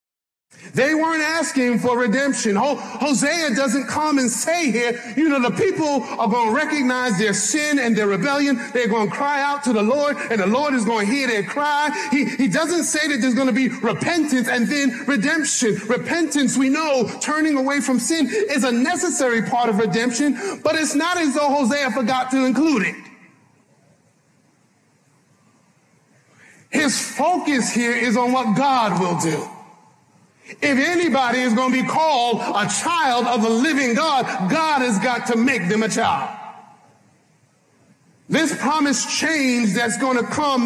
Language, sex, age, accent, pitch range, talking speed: English, male, 40-59, American, 220-285 Hz, 170 wpm